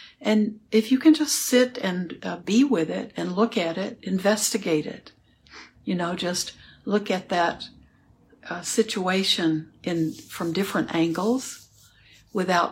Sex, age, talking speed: female, 60-79, 140 wpm